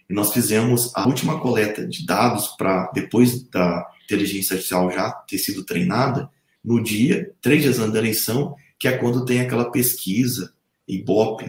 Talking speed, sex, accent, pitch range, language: 155 wpm, male, Brazilian, 105-140 Hz, Portuguese